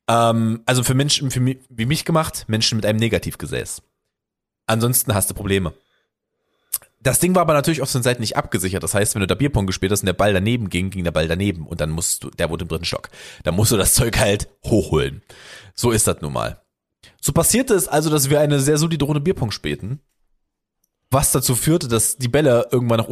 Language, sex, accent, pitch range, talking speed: German, male, German, 95-140 Hz, 220 wpm